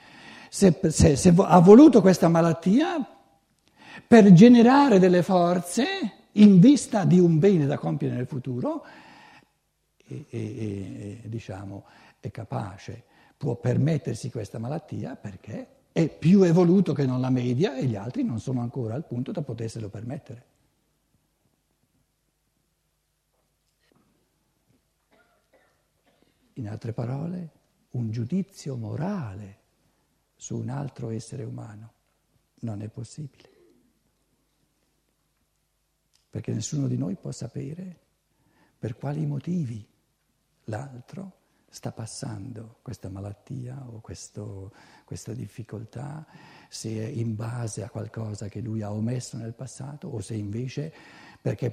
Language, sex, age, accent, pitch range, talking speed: Italian, male, 60-79, native, 115-165 Hz, 115 wpm